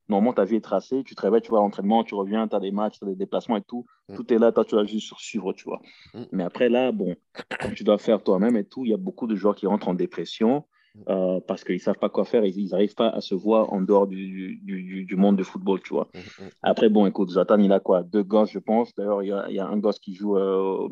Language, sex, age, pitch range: English, male, 30-49, 95-110 Hz